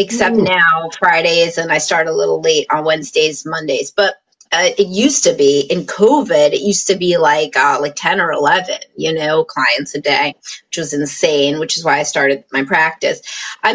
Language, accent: English, American